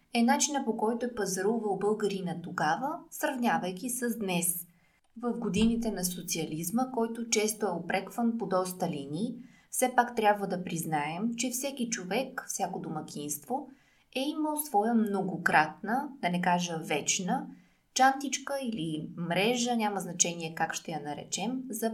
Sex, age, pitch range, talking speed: female, 20-39, 185-235 Hz, 135 wpm